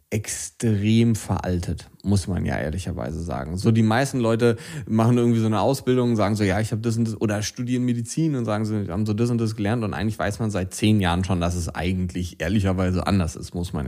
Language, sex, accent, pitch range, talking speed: German, male, German, 100-120 Hz, 230 wpm